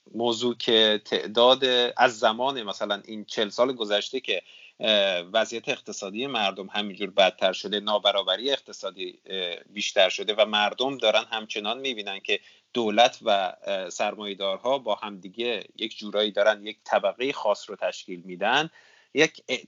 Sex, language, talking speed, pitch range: male, Persian, 130 wpm, 105-140 Hz